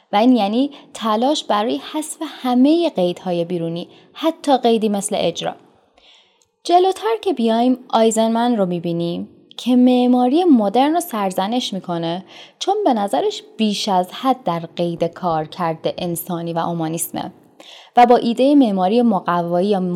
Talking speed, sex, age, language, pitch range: 125 wpm, female, 20-39, Persian, 175-255 Hz